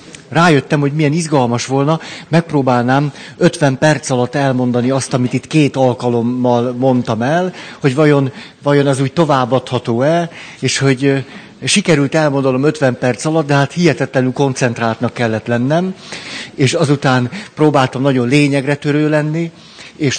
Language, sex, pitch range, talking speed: Hungarian, male, 130-155 Hz, 130 wpm